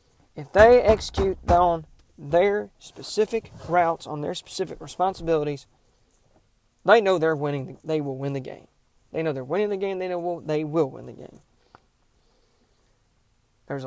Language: English